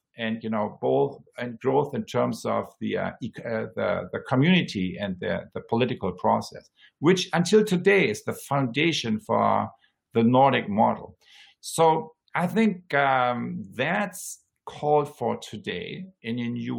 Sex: male